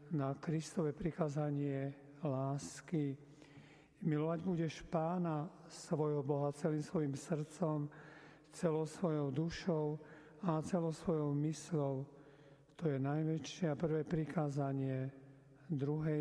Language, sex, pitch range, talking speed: Slovak, male, 145-165 Hz, 95 wpm